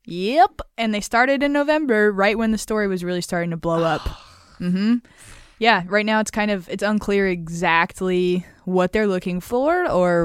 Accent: American